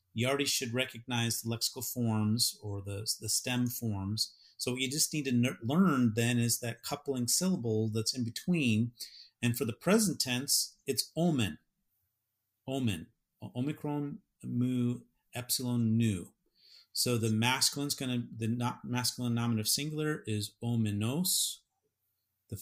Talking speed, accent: 140 wpm, American